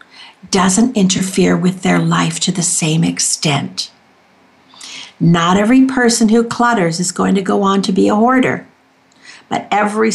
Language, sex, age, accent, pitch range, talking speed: English, female, 60-79, American, 180-230 Hz, 150 wpm